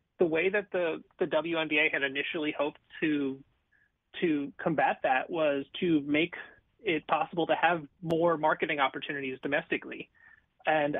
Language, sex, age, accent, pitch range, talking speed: English, male, 30-49, American, 140-165 Hz, 135 wpm